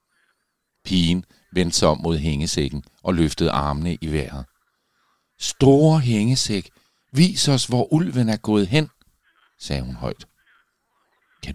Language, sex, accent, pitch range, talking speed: Danish, male, native, 75-110 Hz, 125 wpm